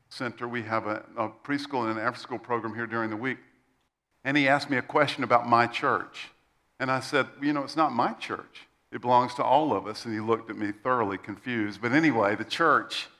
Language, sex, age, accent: English, male, 50-69, American